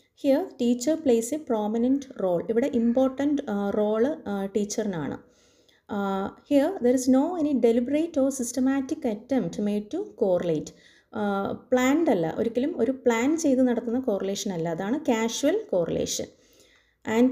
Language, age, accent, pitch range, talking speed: Malayalam, 30-49, native, 215-270 Hz, 145 wpm